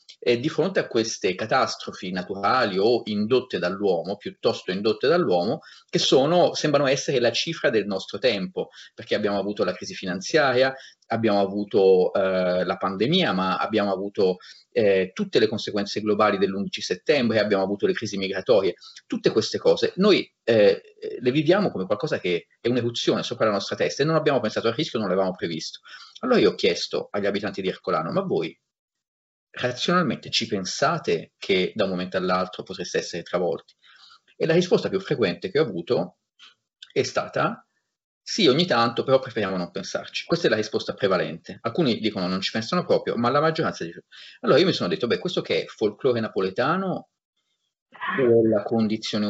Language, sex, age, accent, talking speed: Italian, male, 30-49, native, 170 wpm